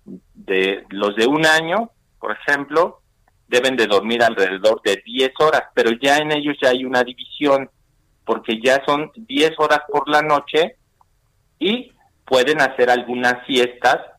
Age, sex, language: 50-69, male, Spanish